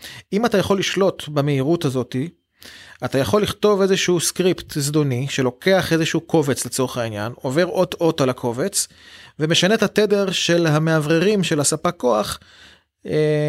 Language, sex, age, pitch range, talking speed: Hebrew, male, 30-49, 150-190 Hz, 135 wpm